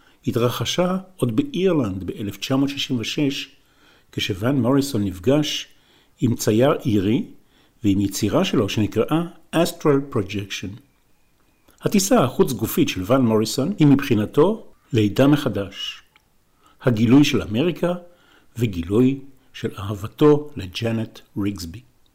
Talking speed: 90 wpm